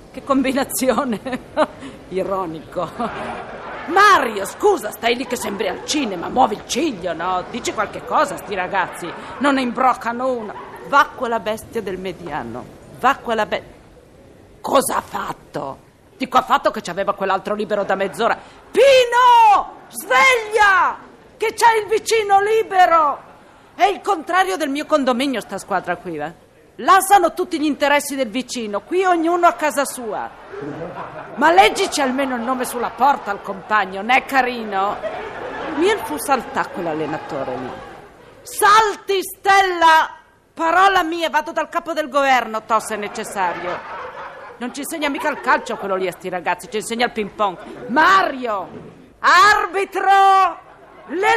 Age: 40-59